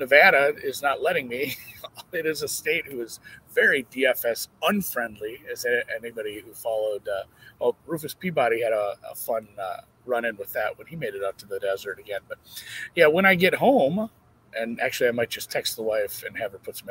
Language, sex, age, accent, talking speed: English, male, 40-59, American, 215 wpm